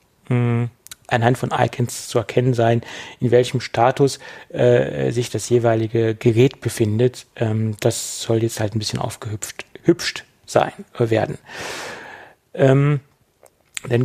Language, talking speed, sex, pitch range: German, 120 wpm, male, 120-135 Hz